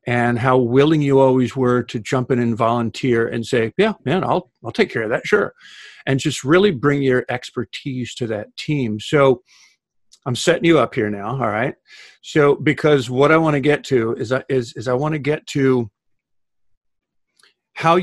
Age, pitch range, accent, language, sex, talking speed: 50-69, 120-145 Hz, American, English, male, 195 wpm